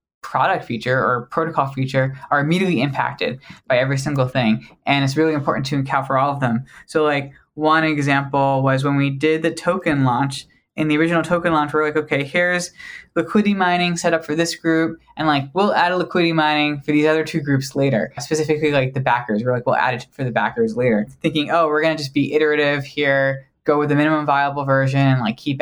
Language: English